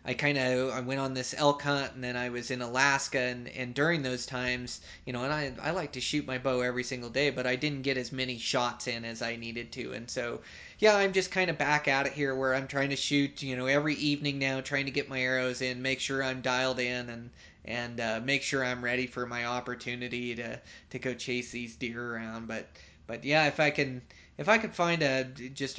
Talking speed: 245 wpm